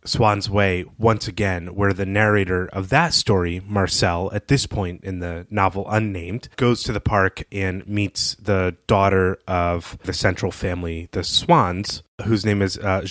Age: 30-49